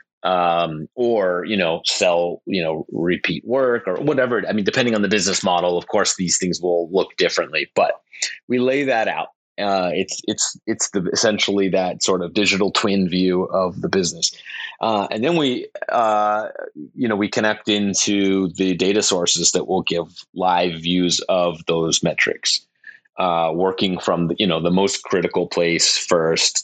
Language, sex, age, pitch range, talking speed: English, male, 30-49, 85-100 Hz, 175 wpm